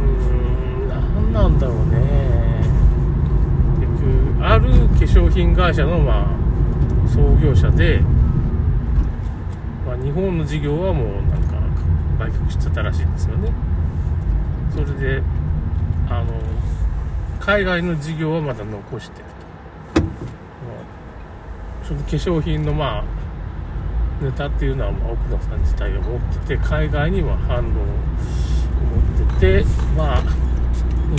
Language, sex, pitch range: Japanese, male, 70-85 Hz